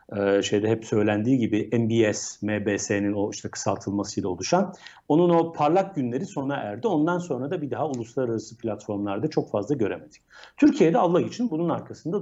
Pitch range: 125-165 Hz